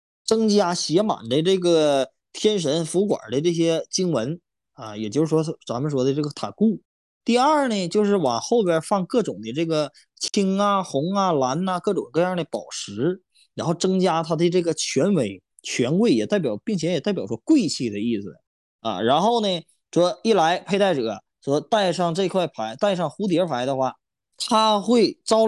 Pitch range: 135-190 Hz